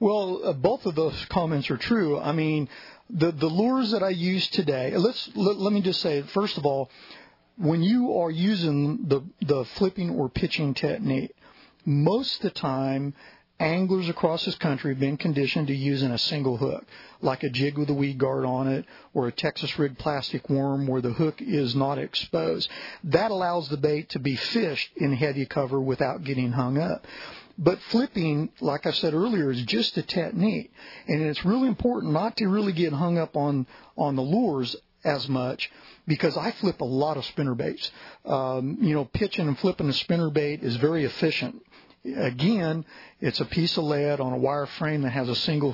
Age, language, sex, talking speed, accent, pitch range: 40-59, English, male, 190 wpm, American, 140-180 Hz